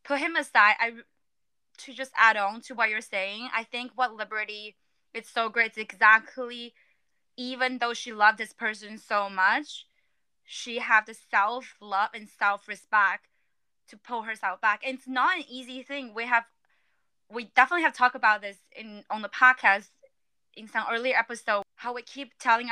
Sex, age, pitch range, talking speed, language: female, 20-39, 215-255 Hz, 170 wpm, English